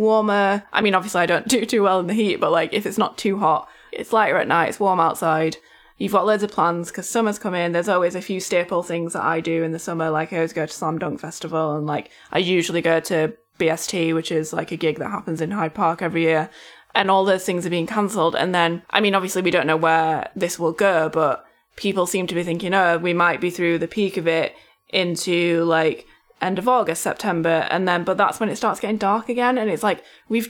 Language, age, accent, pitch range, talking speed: English, 20-39, British, 165-200 Hz, 250 wpm